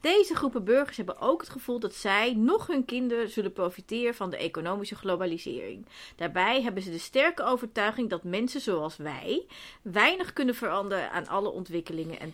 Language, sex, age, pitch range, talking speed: Dutch, female, 40-59, 195-265 Hz, 170 wpm